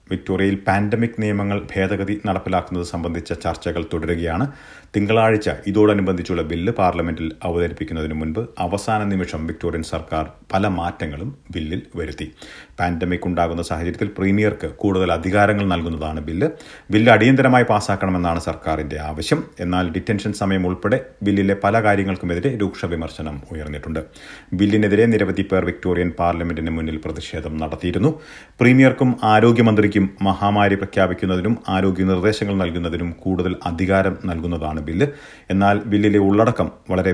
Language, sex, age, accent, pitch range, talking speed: Malayalam, male, 40-59, native, 85-105 Hz, 110 wpm